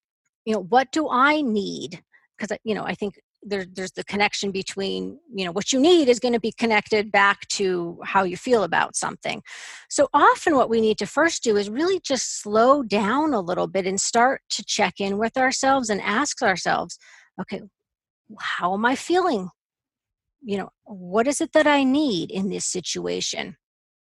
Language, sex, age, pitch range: English, female, 40-59, 200-265 Hz